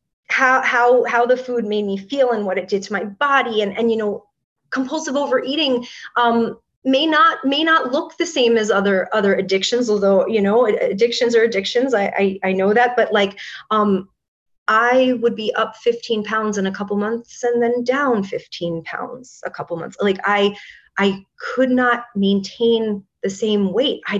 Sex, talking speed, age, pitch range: female, 185 wpm, 30-49, 195-240 Hz